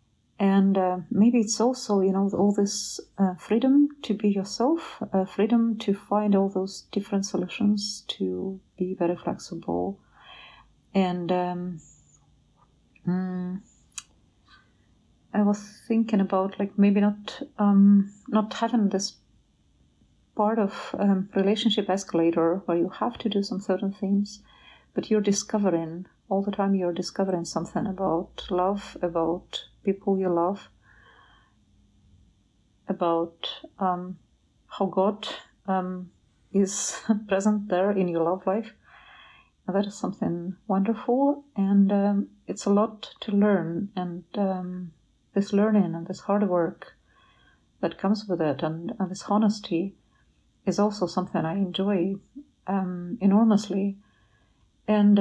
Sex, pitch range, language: female, 180-205 Hz, English